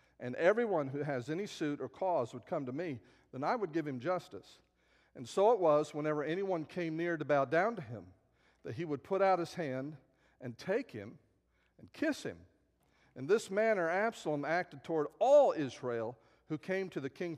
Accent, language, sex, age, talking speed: American, English, male, 50-69, 195 wpm